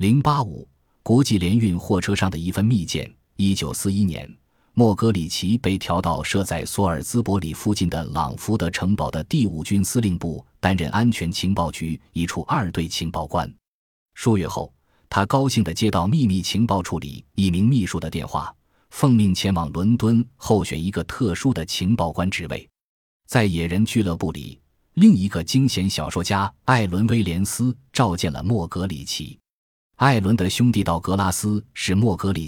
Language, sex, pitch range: Chinese, male, 85-110 Hz